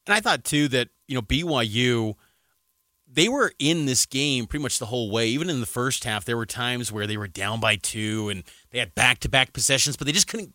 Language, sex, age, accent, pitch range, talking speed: English, male, 30-49, American, 125-160 Hz, 235 wpm